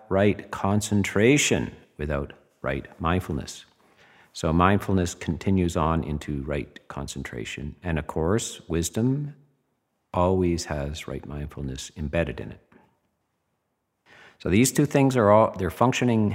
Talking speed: 115 wpm